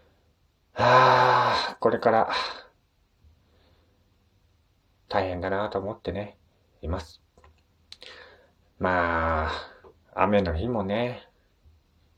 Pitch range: 85-130 Hz